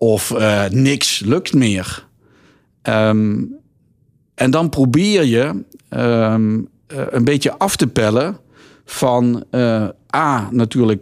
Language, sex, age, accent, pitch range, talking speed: Dutch, male, 50-69, Dutch, 110-140 Hz, 115 wpm